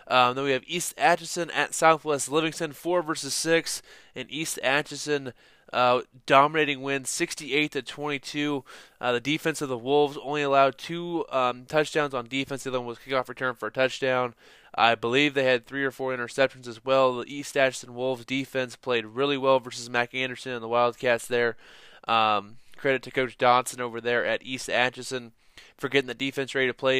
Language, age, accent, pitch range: English, 20-39, American, 120-140 Hz